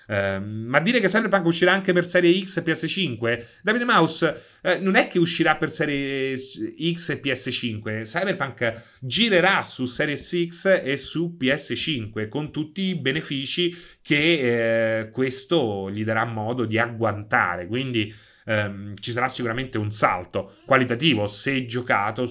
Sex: male